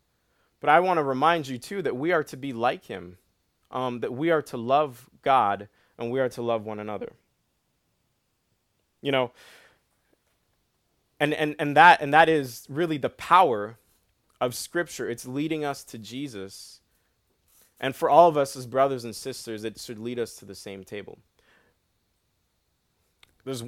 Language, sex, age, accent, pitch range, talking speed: English, male, 20-39, American, 110-150 Hz, 160 wpm